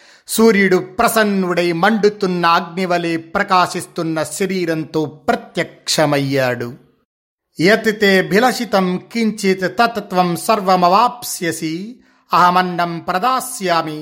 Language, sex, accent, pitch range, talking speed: Telugu, male, native, 155-190 Hz, 45 wpm